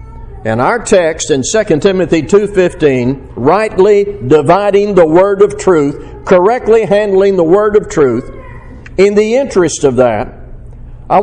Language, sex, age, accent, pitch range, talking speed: English, male, 50-69, American, 125-195 Hz, 135 wpm